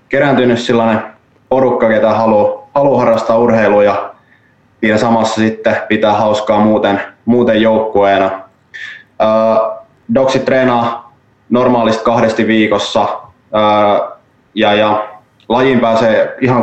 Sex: male